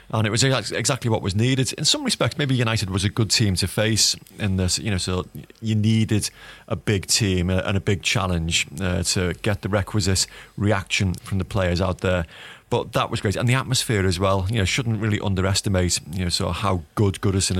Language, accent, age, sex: English, British, 30-49, male